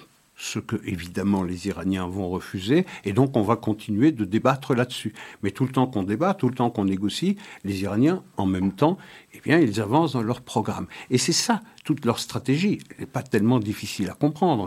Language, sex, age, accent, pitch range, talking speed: French, male, 60-79, French, 100-125 Hz, 205 wpm